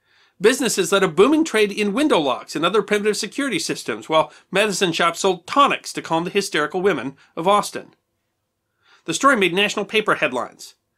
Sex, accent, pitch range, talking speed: male, American, 180-250 Hz, 170 wpm